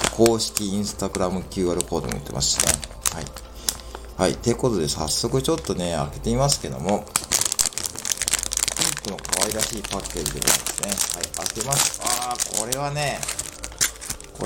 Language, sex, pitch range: Japanese, male, 80-115 Hz